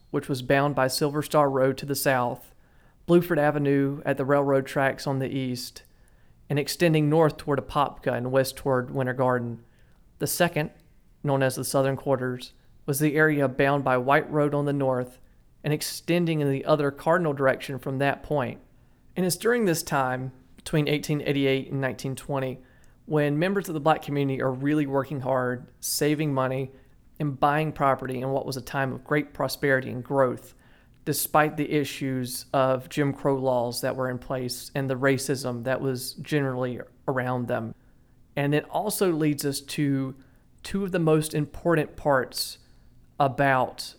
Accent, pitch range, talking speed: American, 130-150 Hz, 165 wpm